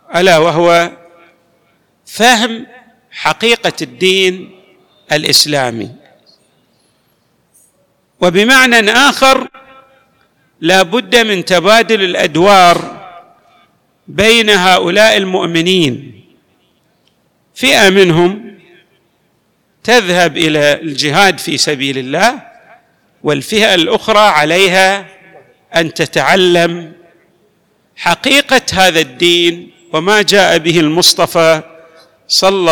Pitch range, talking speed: 170-230 Hz, 70 wpm